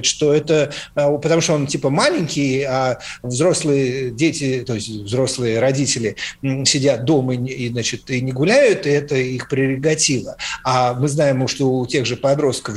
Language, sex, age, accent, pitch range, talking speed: Russian, male, 50-69, native, 130-160 Hz, 160 wpm